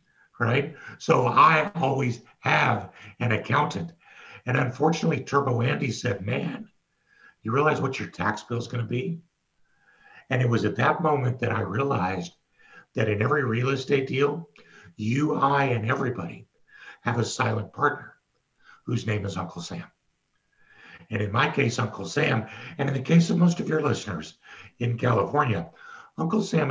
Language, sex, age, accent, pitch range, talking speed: English, male, 60-79, American, 110-145 Hz, 155 wpm